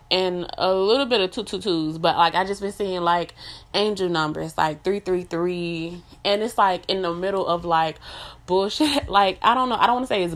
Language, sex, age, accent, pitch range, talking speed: English, female, 20-39, American, 170-210 Hz, 225 wpm